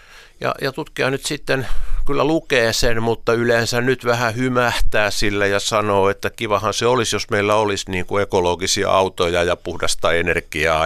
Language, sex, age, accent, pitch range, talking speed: Finnish, male, 50-69, native, 100-130 Hz, 160 wpm